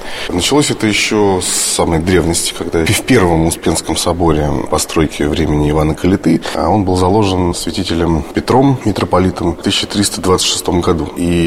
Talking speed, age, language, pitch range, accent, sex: 135 wpm, 20-39, Russian, 85-110 Hz, native, male